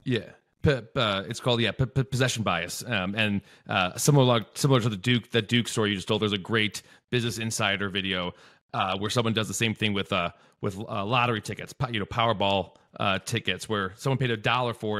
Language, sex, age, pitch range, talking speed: English, male, 30-49, 105-125 Hz, 205 wpm